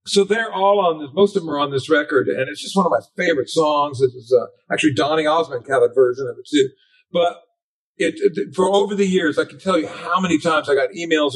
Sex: male